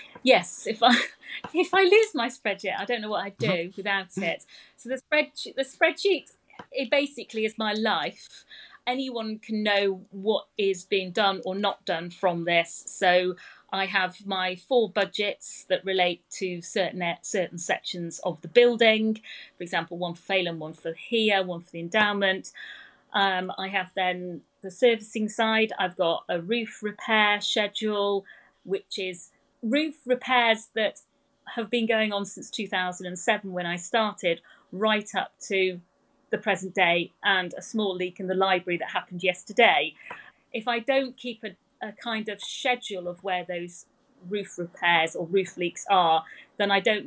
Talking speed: 165 wpm